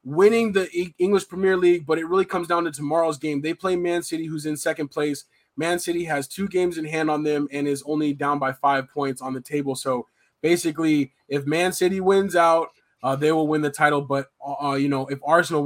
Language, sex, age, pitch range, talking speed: English, male, 20-39, 135-165 Hz, 230 wpm